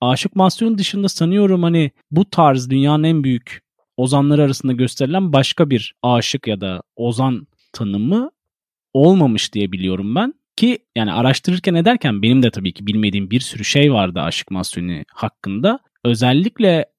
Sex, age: male, 40-59